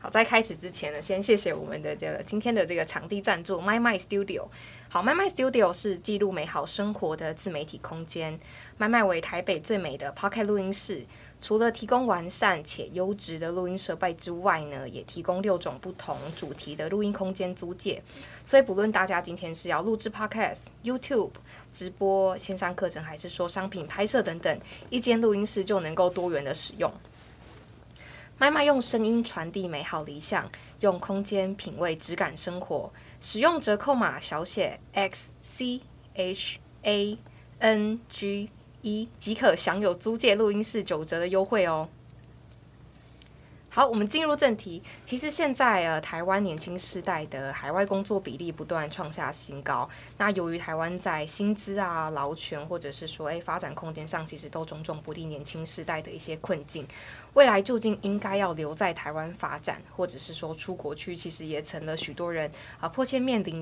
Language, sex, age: Chinese, female, 20-39